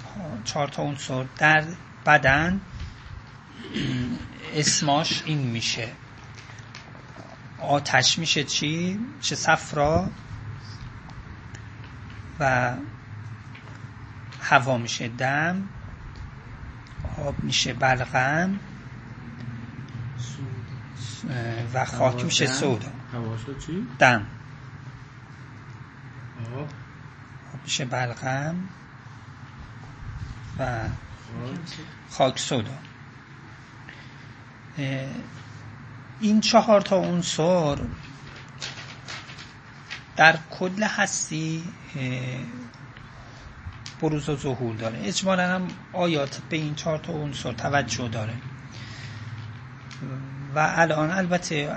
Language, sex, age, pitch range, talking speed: Persian, male, 30-49, 125-150 Hz, 60 wpm